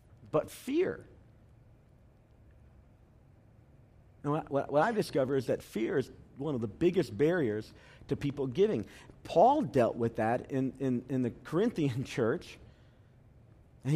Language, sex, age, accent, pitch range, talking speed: English, male, 50-69, American, 120-155 Hz, 130 wpm